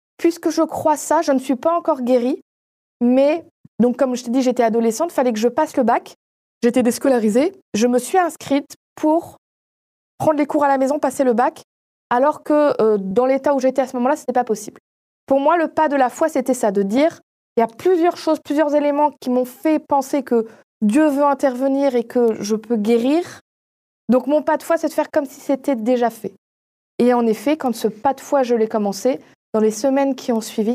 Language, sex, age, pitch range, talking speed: French, female, 20-39, 225-295 Hz, 225 wpm